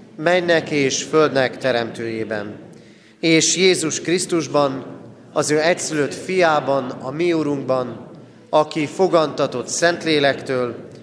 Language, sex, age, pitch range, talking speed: Hungarian, male, 30-49, 125-170 Hz, 90 wpm